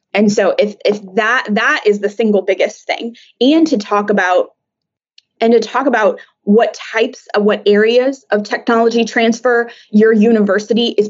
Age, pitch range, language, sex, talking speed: 20-39, 200-250 Hz, English, female, 160 wpm